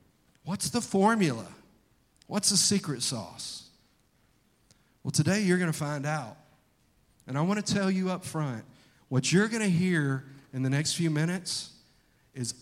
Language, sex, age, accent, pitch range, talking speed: English, male, 40-59, American, 130-175 Hz, 155 wpm